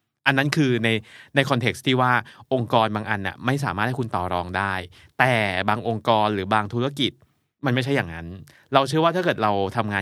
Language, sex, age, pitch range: Thai, male, 20-39, 100-125 Hz